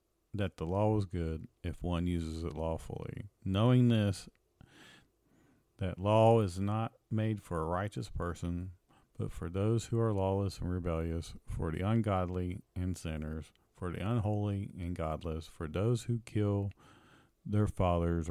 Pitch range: 85-110 Hz